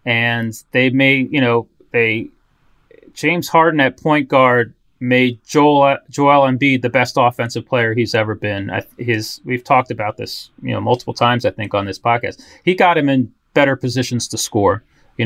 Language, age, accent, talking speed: English, 30-49, American, 180 wpm